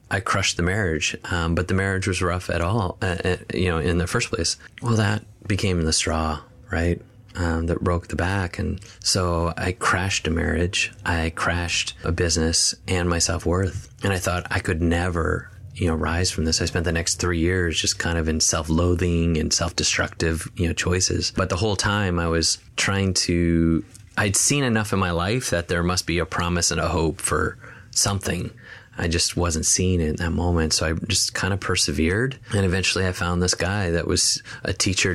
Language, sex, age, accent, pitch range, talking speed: English, male, 30-49, American, 85-100 Hz, 205 wpm